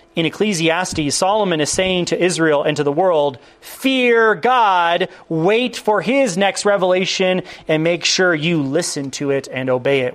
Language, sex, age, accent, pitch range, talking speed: English, male, 30-49, American, 140-185 Hz, 165 wpm